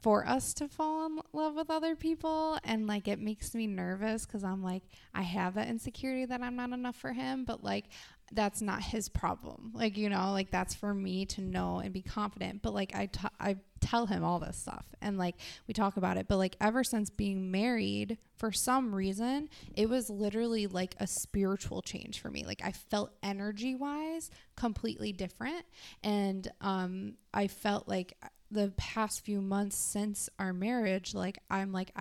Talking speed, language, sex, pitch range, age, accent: 190 wpm, English, female, 190-225 Hz, 20-39, American